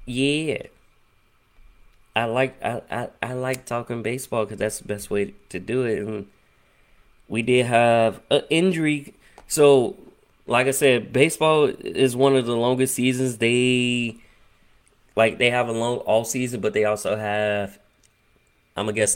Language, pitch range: English, 110-135 Hz